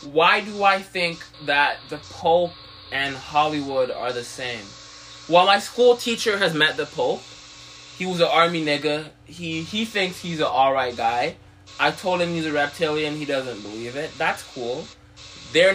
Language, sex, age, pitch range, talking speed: English, male, 20-39, 130-165 Hz, 170 wpm